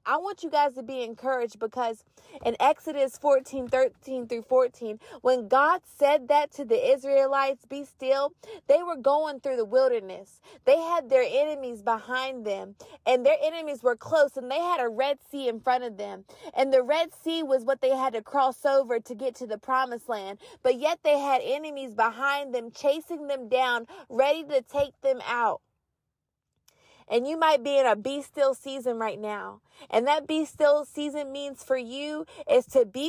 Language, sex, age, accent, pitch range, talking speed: English, female, 20-39, American, 255-305 Hz, 190 wpm